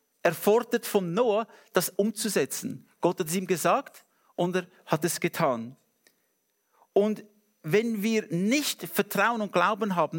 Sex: male